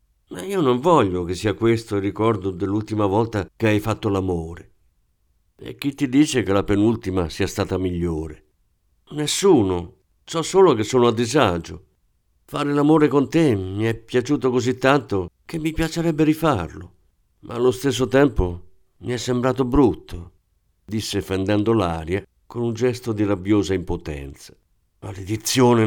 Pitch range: 90-125 Hz